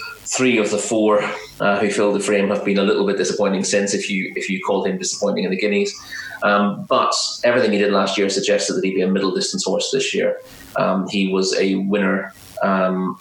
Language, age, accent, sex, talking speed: English, 30-49, British, male, 225 wpm